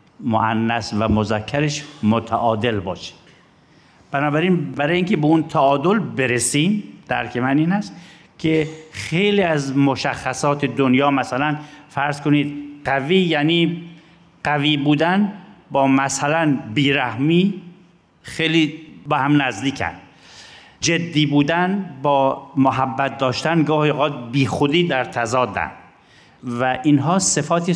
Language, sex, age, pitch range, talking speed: Persian, male, 50-69, 125-165 Hz, 105 wpm